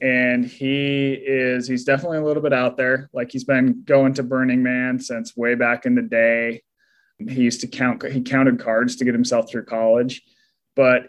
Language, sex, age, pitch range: English, male, 20-39, 125-140 Hz